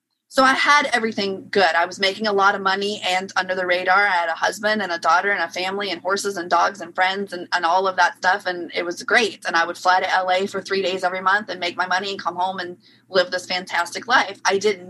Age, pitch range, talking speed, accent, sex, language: 30-49, 185-220 Hz, 270 wpm, American, female, English